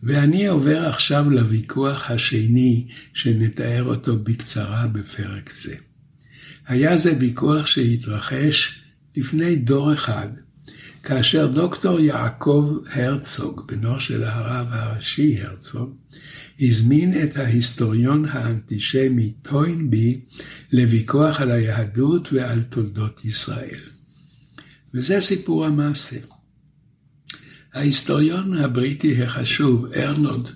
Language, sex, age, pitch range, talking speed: Hebrew, male, 60-79, 120-150 Hz, 85 wpm